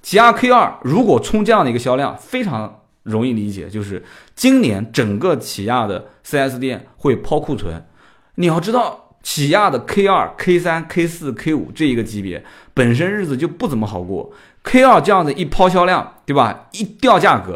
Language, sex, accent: Chinese, male, native